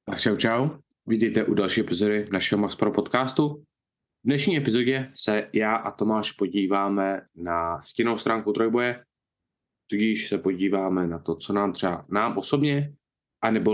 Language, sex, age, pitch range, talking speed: Czech, male, 20-39, 90-115 Hz, 145 wpm